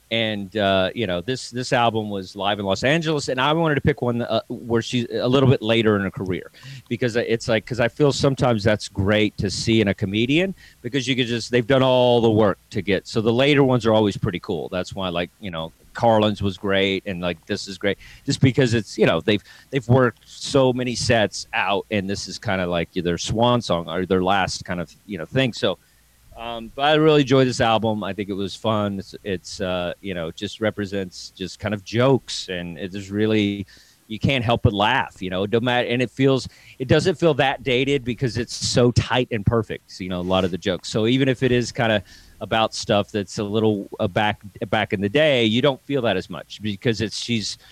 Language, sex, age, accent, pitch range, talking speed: English, male, 40-59, American, 100-125 Hz, 235 wpm